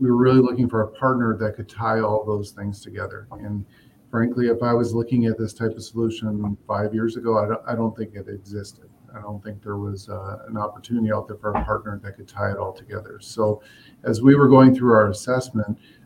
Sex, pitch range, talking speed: male, 105-120 Hz, 230 wpm